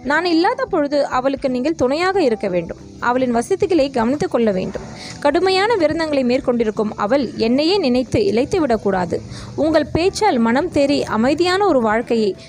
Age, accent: 20-39, native